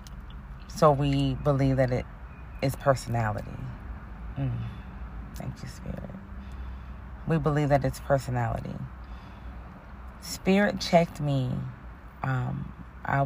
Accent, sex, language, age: American, female, English, 30-49